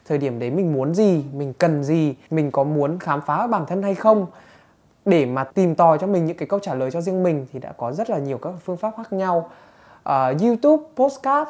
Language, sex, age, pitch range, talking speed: Vietnamese, male, 20-39, 140-195 Hz, 240 wpm